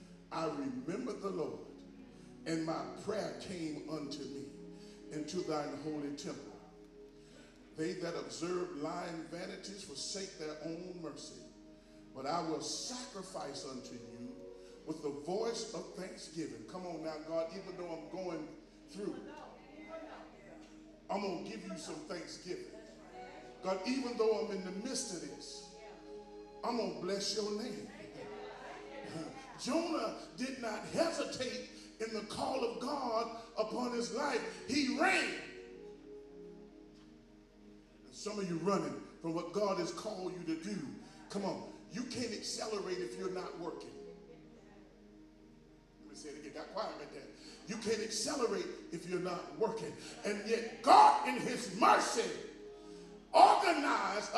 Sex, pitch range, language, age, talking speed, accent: male, 145-230 Hz, English, 40-59, 140 wpm, American